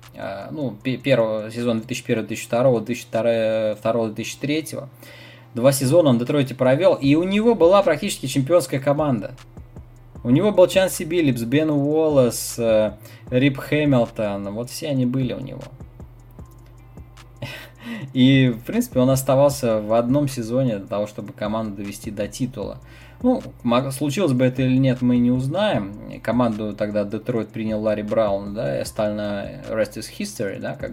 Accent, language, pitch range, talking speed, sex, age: native, Russian, 115-140 Hz, 135 wpm, male, 20-39